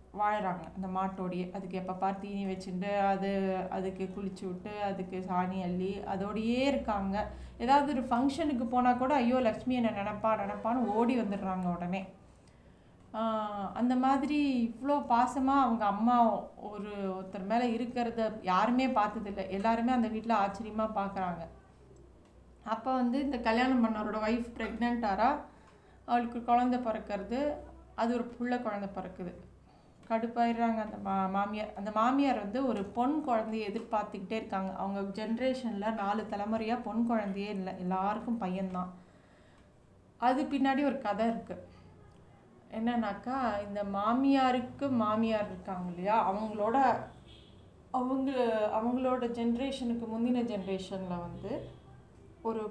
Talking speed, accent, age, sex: 115 wpm, native, 30-49, female